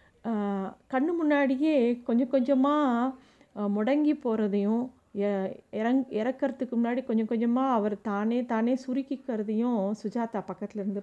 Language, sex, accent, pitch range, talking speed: Tamil, female, native, 220-275 Hz, 100 wpm